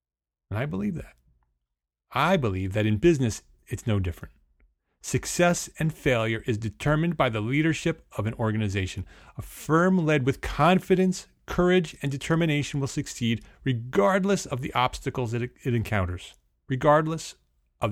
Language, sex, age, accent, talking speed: English, male, 30-49, American, 135 wpm